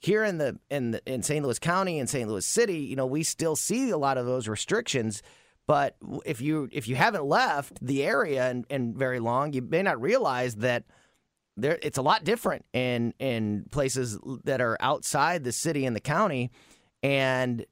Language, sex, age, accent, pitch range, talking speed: English, male, 30-49, American, 125-155 Hz, 195 wpm